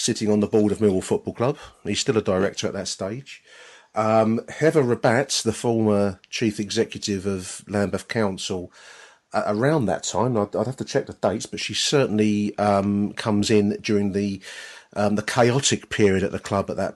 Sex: male